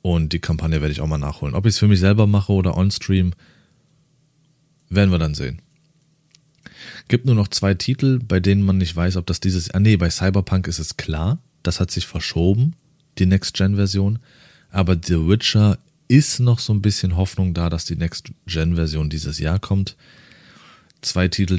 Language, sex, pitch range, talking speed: German, male, 85-125 Hz, 195 wpm